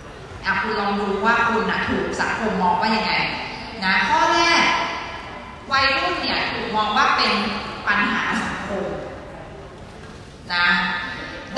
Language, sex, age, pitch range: Thai, female, 20-39, 215-265 Hz